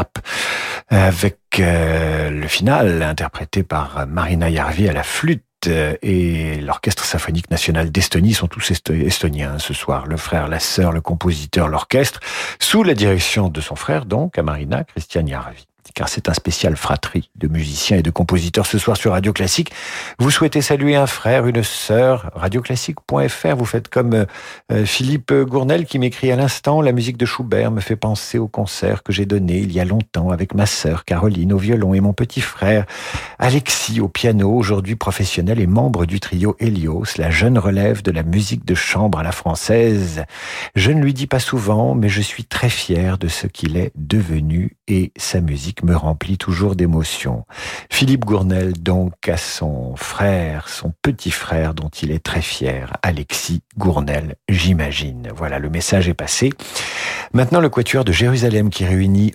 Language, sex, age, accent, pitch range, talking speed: French, male, 50-69, French, 85-115 Hz, 175 wpm